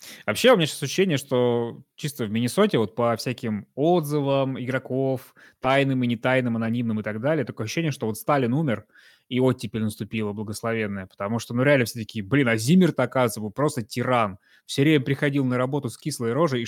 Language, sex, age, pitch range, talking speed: Russian, male, 20-39, 110-140 Hz, 190 wpm